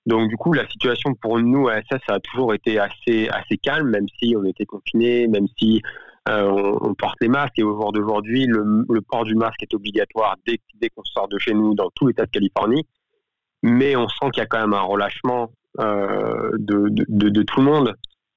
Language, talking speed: French, 225 wpm